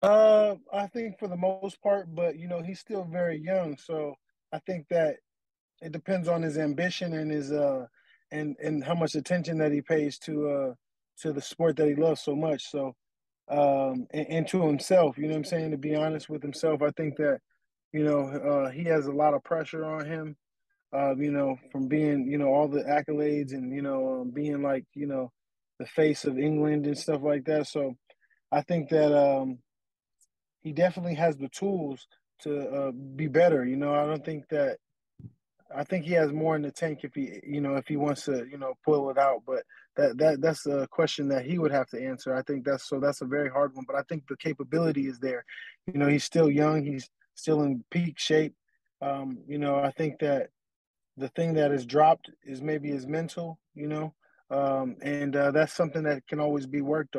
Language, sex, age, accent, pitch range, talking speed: English, male, 20-39, American, 140-160 Hz, 215 wpm